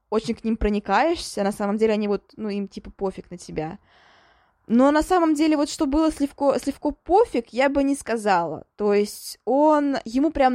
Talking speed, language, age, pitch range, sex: 190 wpm, Russian, 20-39, 205-245 Hz, female